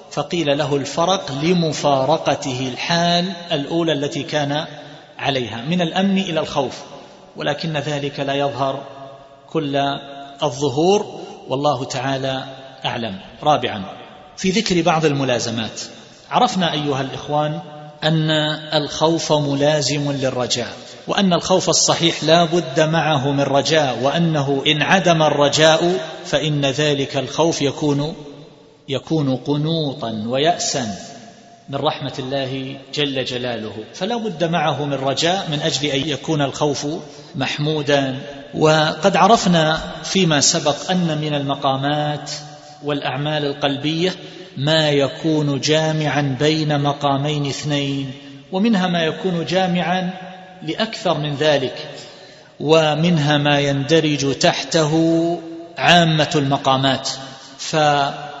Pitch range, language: 140-160 Hz, Arabic